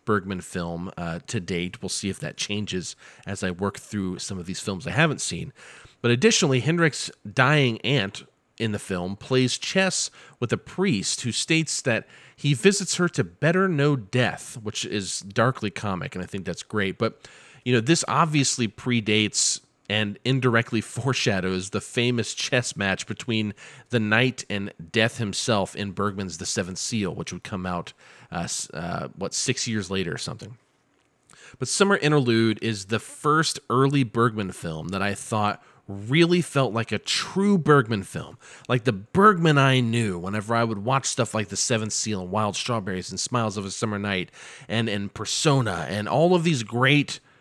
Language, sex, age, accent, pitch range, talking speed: English, male, 40-59, American, 100-135 Hz, 175 wpm